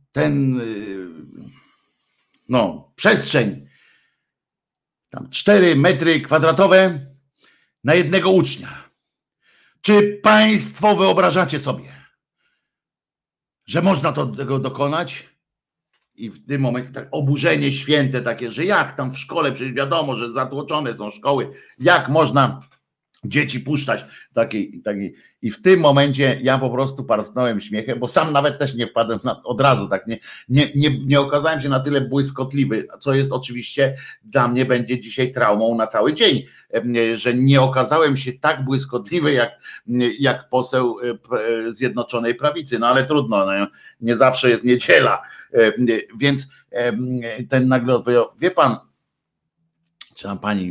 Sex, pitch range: male, 120-150 Hz